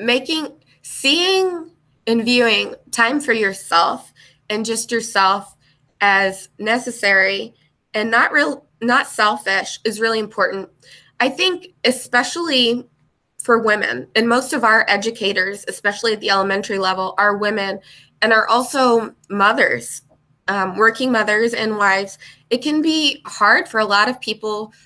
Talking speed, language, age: 135 wpm, English, 20-39